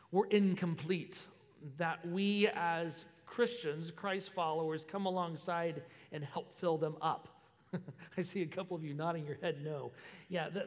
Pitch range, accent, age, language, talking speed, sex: 170-215 Hz, American, 40-59, English, 150 wpm, male